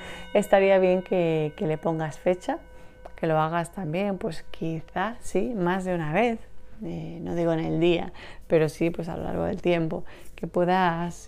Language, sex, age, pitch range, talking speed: Spanish, female, 30-49, 155-185 Hz, 180 wpm